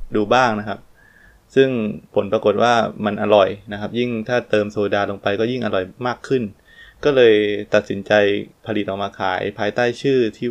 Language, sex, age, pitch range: Thai, male, 20-39, 105-120 Hz